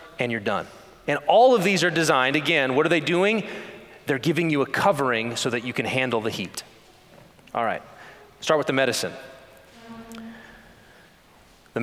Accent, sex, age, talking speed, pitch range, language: American, male, 30-49, 165 wpm, 135-190 Hz, English